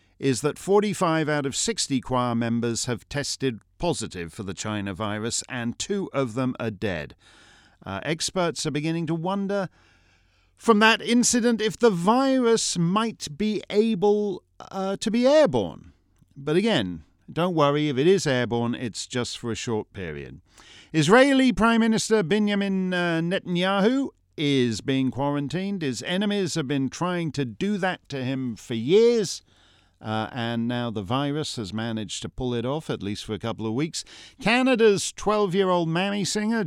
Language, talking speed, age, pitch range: English, 160 wpm, 50-69, 120-195 Hz